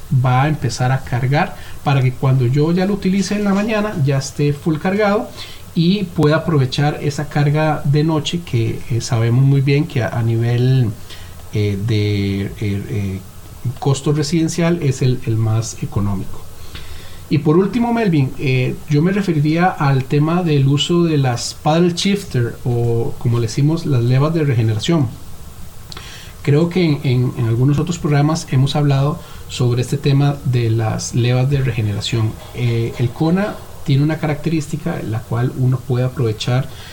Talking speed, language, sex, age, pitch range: 160 wpm, Spanish, male, 40-59, 115-155 Hz